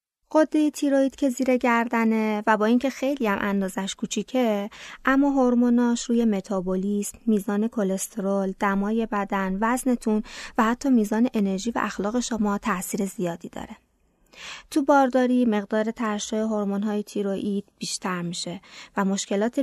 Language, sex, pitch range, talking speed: Persian, female, 195-235 Hz, 125 wpm